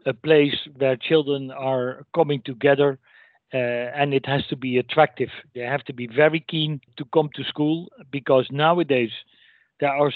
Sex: male